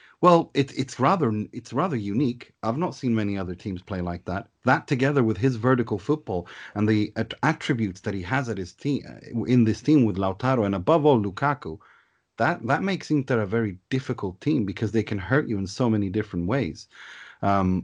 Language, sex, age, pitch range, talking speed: English, male, 30-49, 100-130 Hz, 200 wpm